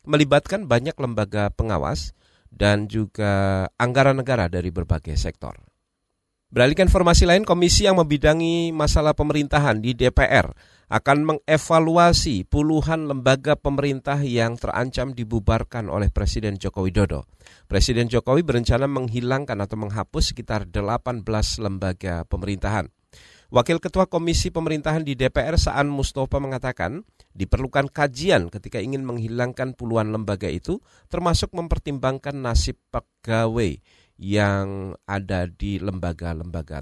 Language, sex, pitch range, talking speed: Indonesian, male, 110-145 Hz, 110 wpm